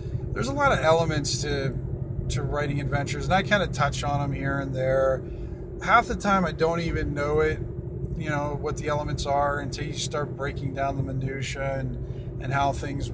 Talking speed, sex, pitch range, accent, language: 200 wpm, male, 125-155 Hz, American, English